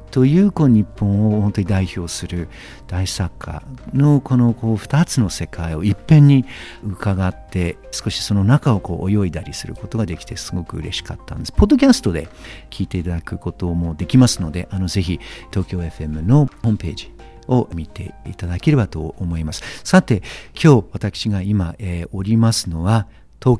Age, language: 50-69, Japanese